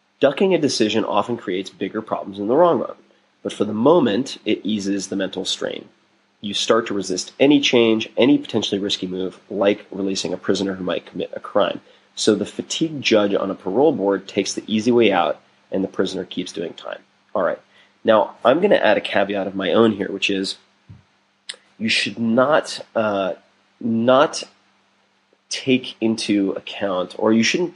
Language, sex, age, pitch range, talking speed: English, male, 30-49, 95-115 Hz, 180 wpm